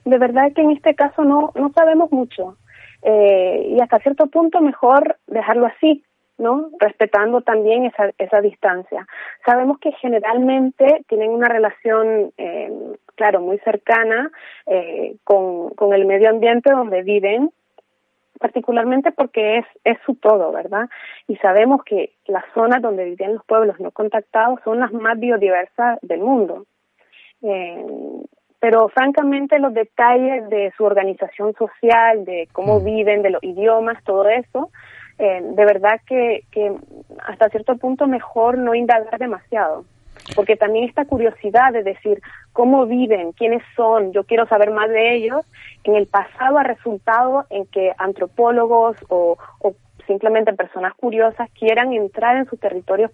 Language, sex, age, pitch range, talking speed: Spanish, female, 30-49, 205-250 Hz, 145 wpm